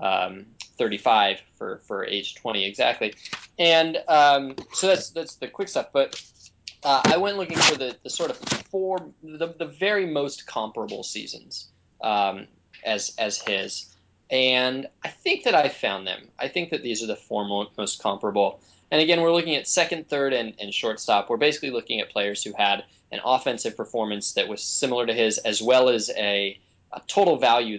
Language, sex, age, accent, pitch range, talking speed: English, male, 20-39, American, 105-155 Hz, 180 wpm